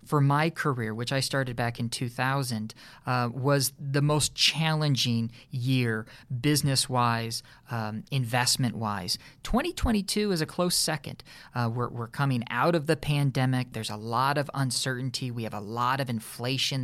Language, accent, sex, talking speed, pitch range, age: English, American, male, 155 wpm, 120-150 Hz, 40-59